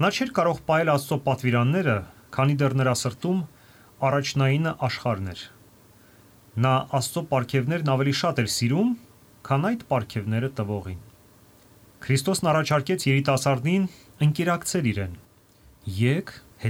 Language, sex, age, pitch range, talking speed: English, male, 30-49, 110-150 Hz, 90 wpm